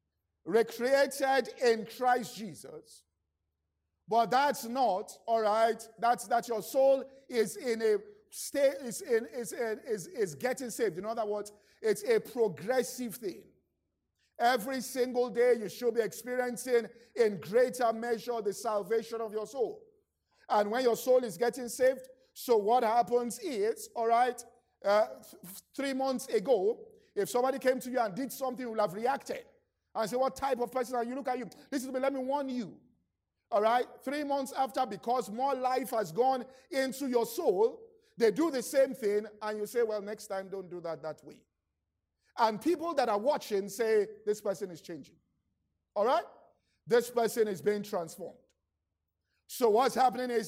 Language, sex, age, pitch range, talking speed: English, male, 50-69, 215-270 Hz, 175 wpm